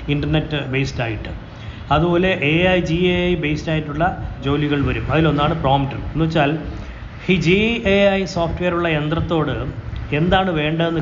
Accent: native